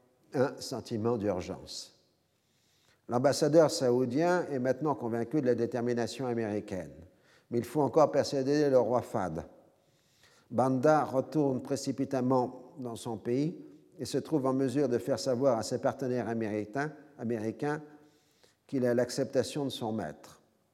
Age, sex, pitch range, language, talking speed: 50-69, male, 115-135 Hz, French, 125 wpm